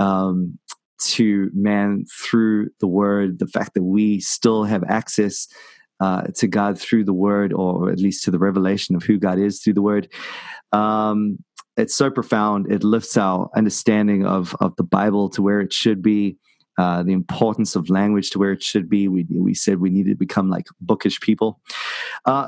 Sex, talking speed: male, 185 wpm